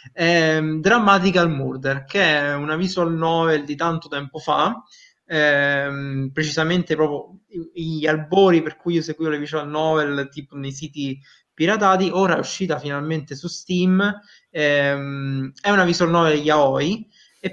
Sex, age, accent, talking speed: male, 20-39, native, 140 wpm